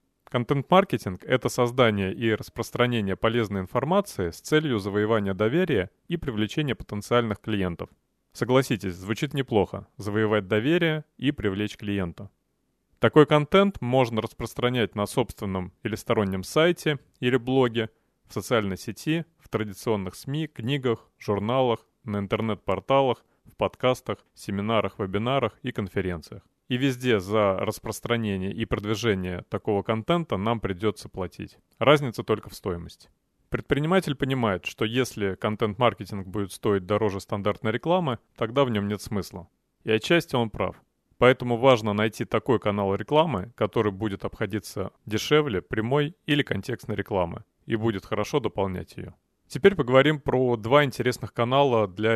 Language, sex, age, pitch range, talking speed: Russian, male, 30-49, 105-130 Hz, 125 wpm